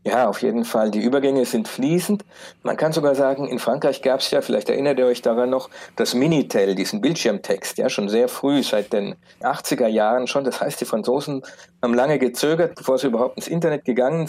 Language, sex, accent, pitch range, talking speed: German, male, German, 120-145 Hz, 200 wpm